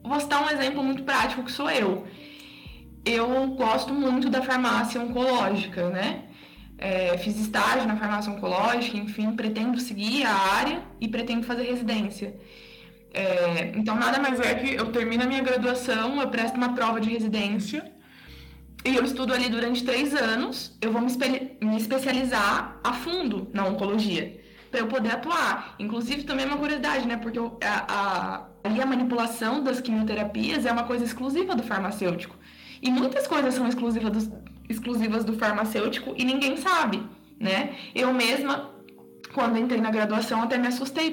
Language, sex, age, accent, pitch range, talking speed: Portuguese, female, 20-39, Brazilian, 210-260 Hz, 155 wpm